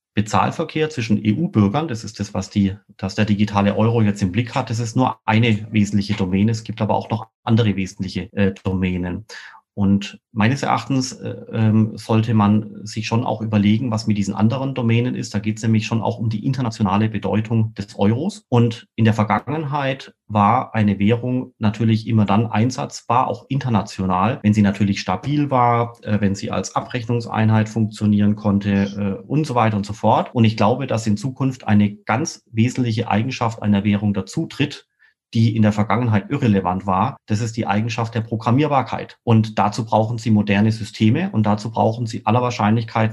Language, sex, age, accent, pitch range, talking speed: German, male, 30-49, German, 105-120 Hz, 180 wpm